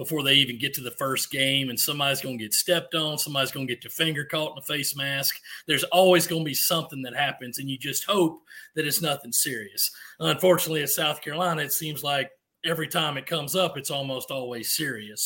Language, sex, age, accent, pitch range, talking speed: English, male, 40-59, American, 145-180 Hz, 230 wpm